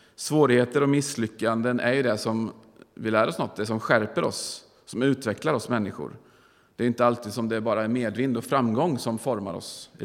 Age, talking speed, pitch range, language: 40-59, 210 wpm, 115-145 Hz, Swedish